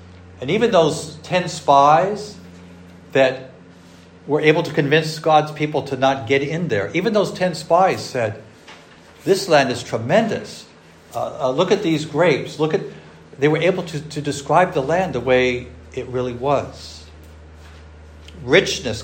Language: English